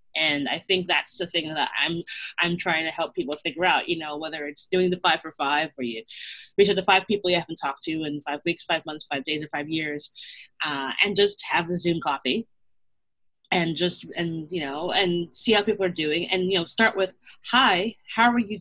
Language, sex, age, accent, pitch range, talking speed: English, female, 30-49, American, 165-210 Hz, 230 wpm